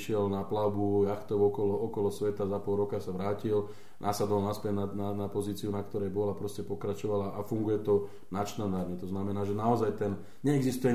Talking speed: 180 wpm